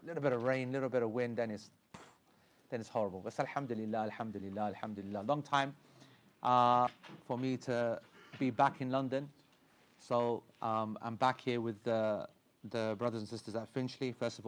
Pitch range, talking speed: 110-130 Hz, 170 wpm